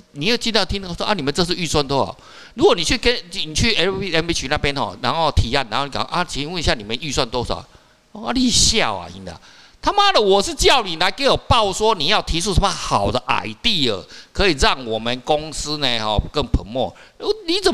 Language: Chinese